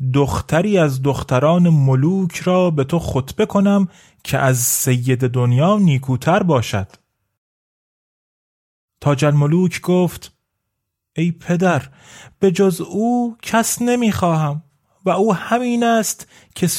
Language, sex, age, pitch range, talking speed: Persian, male, 30-49, 135-185 Hz, 105 wpm